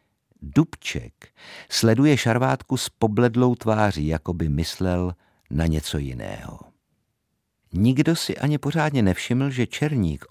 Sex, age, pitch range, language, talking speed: male, 50-69, 85-110 Hz, Czech, 110 wpm